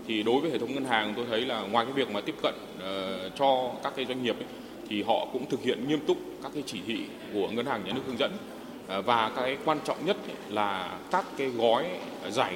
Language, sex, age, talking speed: Vietnamese, male, 20-39, 235 wpm